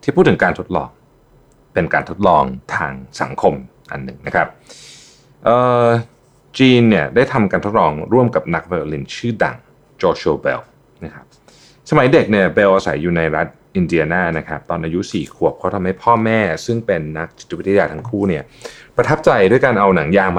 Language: Thai